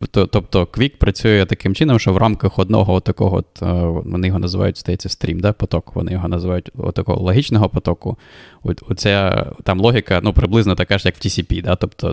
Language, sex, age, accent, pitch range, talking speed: Ukrainian, male, 20-39, native, 90-105 Hz, 165 wpm